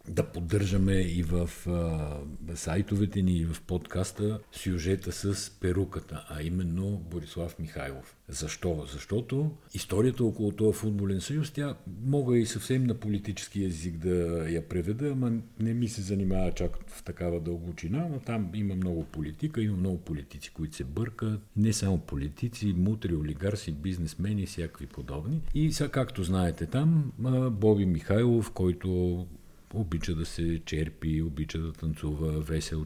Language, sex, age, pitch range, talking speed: Bulgarian, male, 50-69, 80-110 Hz, 140 wpm